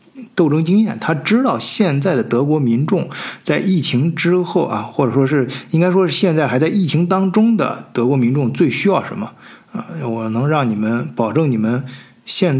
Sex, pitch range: male, 120-175 Hz